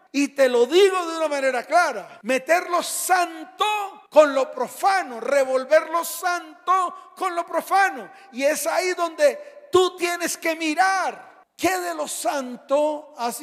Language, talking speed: Spanish, 150 wpm